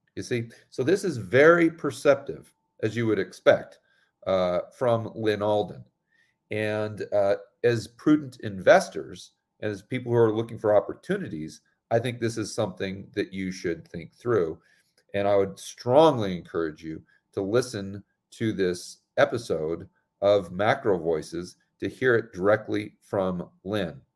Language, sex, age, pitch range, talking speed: English, male, 40-59, 90-115 Hz, 145 wpm